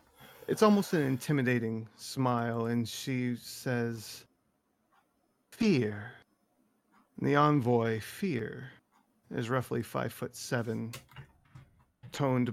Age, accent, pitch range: 40-59, American, 115-140 Hz